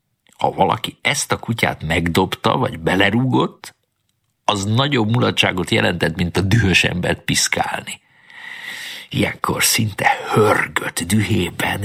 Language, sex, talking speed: Hungarian, male, 105 wpm